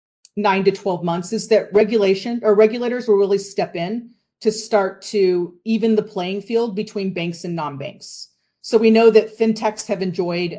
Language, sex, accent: English, female, American